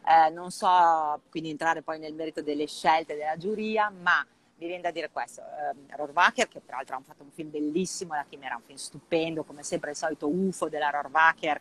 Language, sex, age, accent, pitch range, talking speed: Italian, female, 30-49, native, 145-170 Hz, 200 wpm